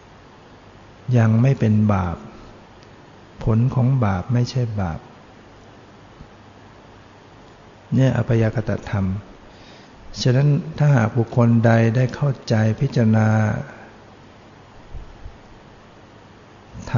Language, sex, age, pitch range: Thai, male, 60-79, 105-125 Hz